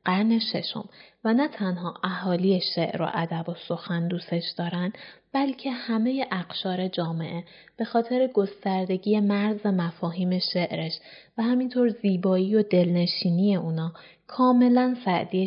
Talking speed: 115 wpm